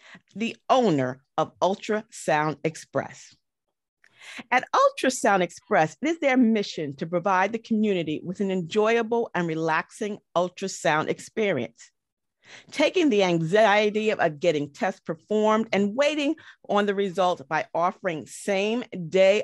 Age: 40-59